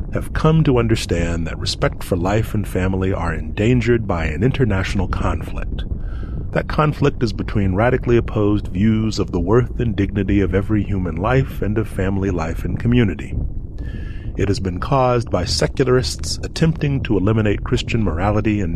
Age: 30-49